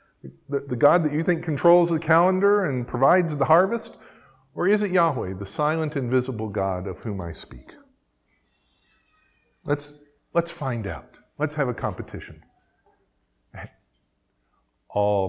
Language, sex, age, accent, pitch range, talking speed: English, male, 50-69, American, 105-155 Hz, 130 wpm